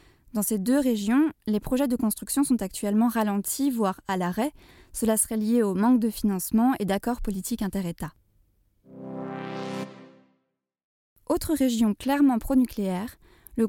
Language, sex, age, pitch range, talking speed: French, female, 20-39, 195-250 Hz, 130 wpm